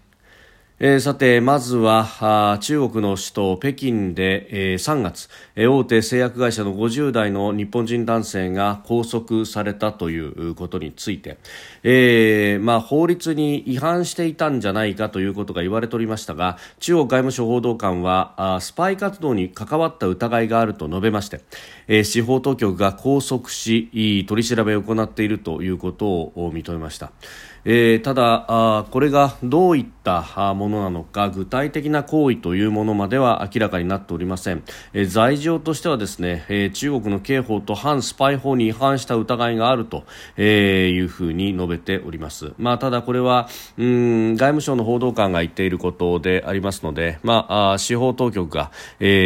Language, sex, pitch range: Japanese, male, 90-120 Hz